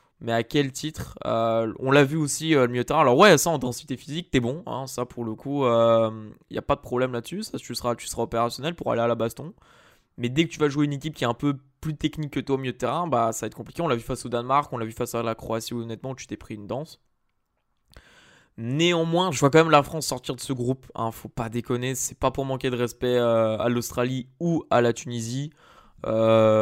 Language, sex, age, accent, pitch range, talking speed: French, male, 20-39, French, 115-150 Hz, 270 wpm